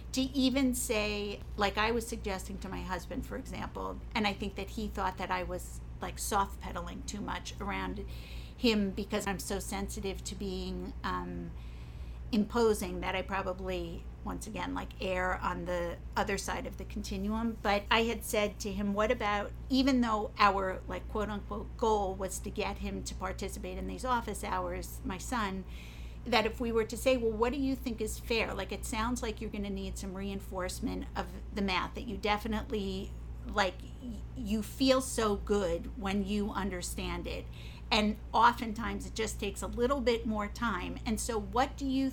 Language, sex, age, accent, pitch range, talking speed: English, female, 50-69, American, 190-230 Hz, 185 wpm